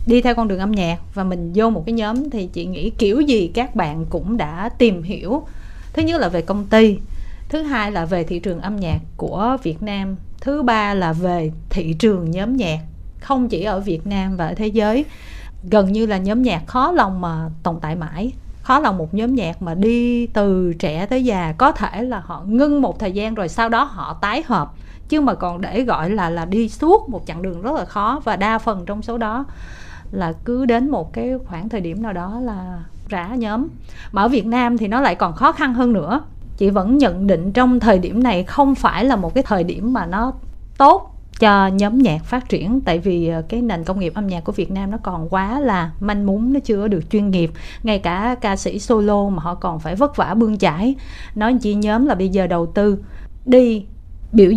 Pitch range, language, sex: 180-240 Hz, Vietnamese, female